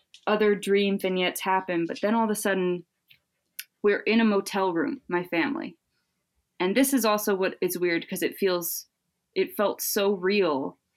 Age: 20-39